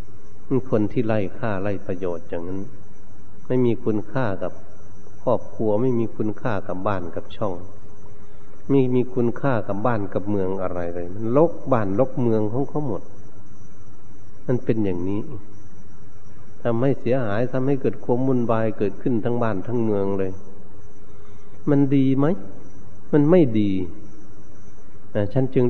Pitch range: 100-130 Hz